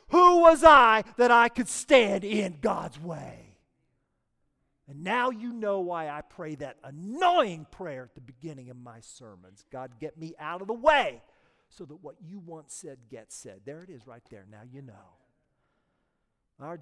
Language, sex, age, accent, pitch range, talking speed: English, male, 40-59, American, 110-165 Hz, 180 wpm